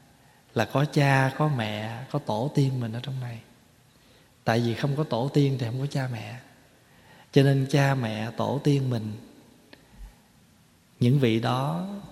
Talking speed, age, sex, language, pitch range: 165 wpm, 20-39, male, Vietnamese, 115-145 Hz